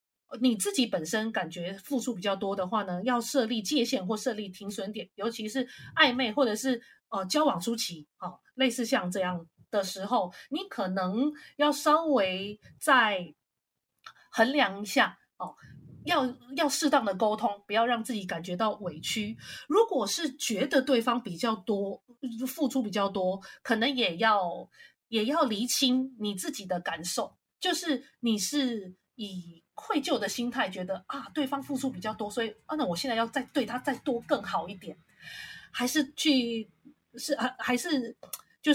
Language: Chinese